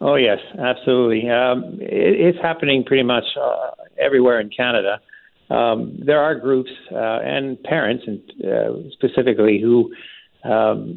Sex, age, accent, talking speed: male, 50-69, American, 130 wpm